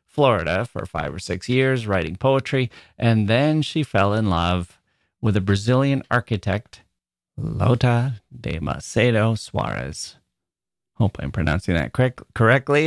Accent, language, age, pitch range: American, English, 30-49, 95-130 Hz